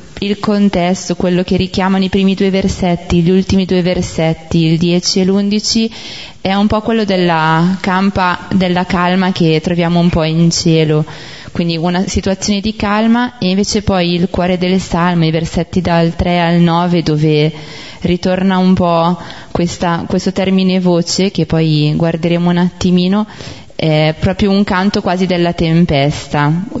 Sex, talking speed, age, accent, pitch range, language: female, 155 wpm, 20-39, native, 170-190 Hz, Italian